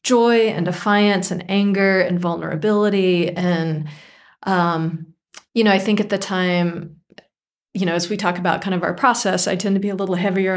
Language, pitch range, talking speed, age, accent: English, 175-200 Hz, 185 wpm, 30-49, American